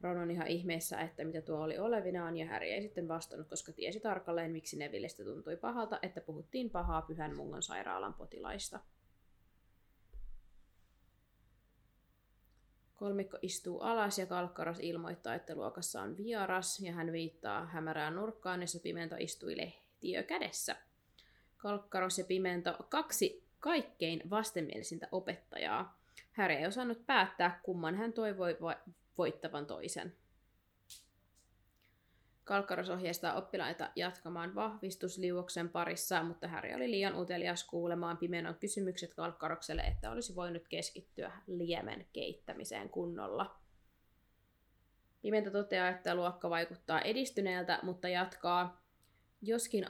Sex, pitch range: female, 165-195 Hz